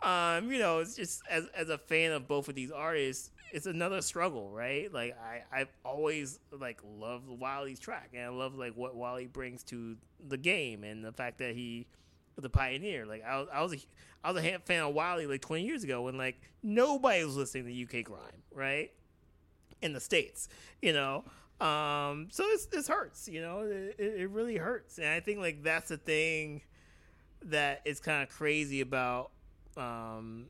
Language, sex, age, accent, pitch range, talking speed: English, male, 30-49, American, 120-150 Hz, 195 wpm